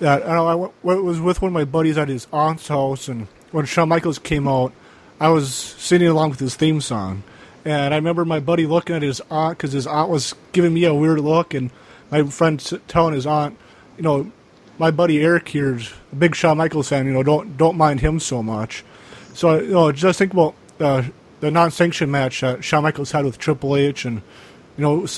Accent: American